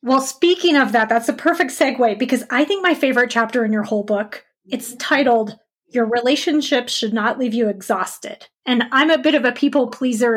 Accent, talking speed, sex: American, 205 wpm, female